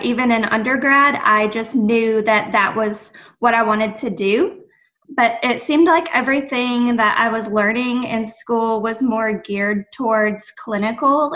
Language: English